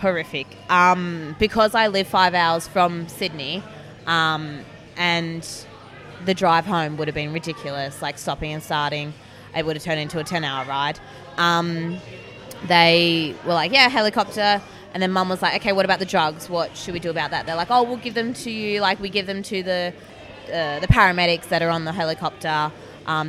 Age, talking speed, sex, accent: 20-39, 195 wpm, female, Australian